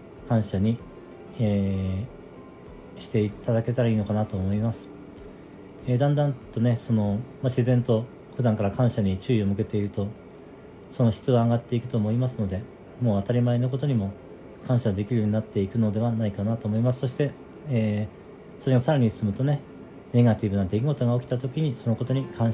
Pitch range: 105-125 Hz